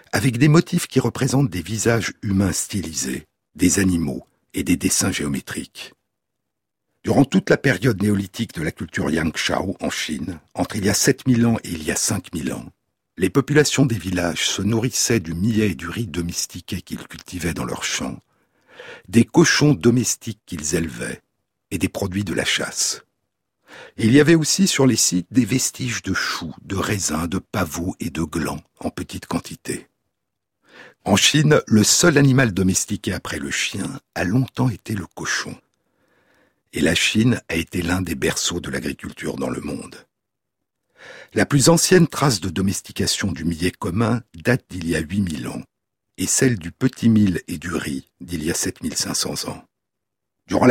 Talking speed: 170 wpm